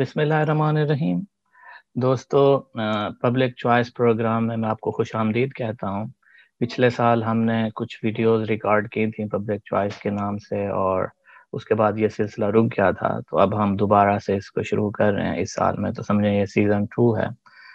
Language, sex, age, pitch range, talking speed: Urdu, male, 20-39, 105-115 Hz, 200 wpm